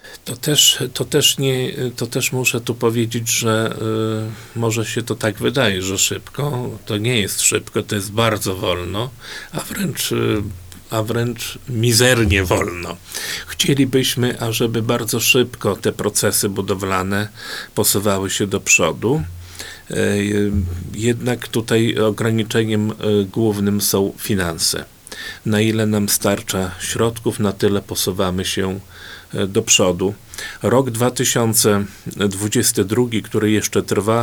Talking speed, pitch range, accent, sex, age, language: 120 wpm, 100-115 Hz, native, male, 50-69, Polish